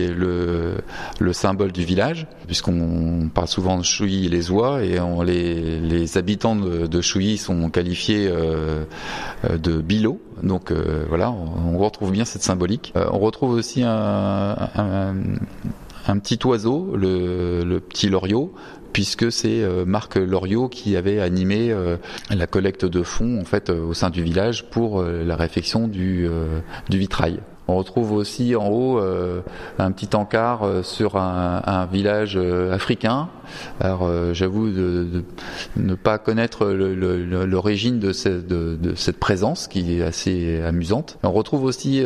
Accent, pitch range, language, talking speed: French, 85-105 Hz, French, 165 wpm